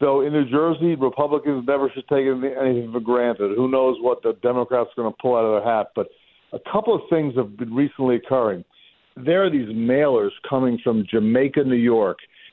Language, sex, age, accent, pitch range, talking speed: English, male, 50-69, American, 125-150 Hz, 200 wpm